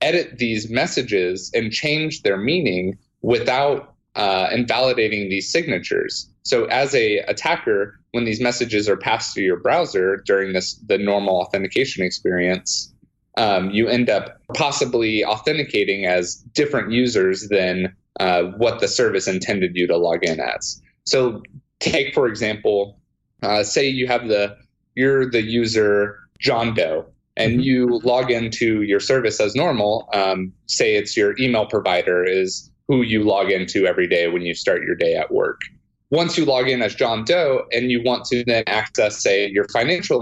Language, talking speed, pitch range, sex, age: English, 160 wpm, 100-135 Hz, male, 30-49